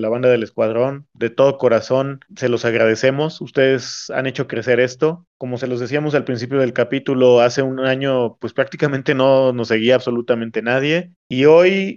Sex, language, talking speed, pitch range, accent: male, Spanish, 175 wpm, 120-140 Hz, Mexican